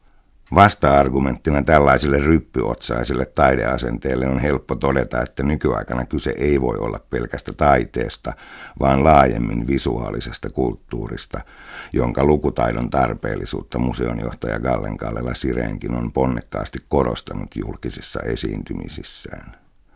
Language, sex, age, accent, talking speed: Finnish, male, 60-79, native, 90 wpm